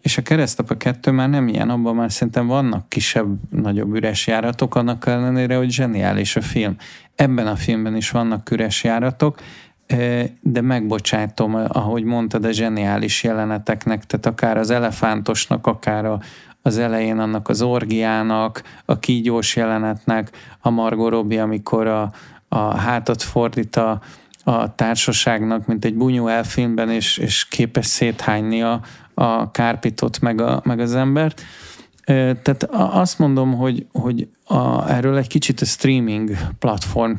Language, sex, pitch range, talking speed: Hungarian, male, 110-120 Hz, 135 wpm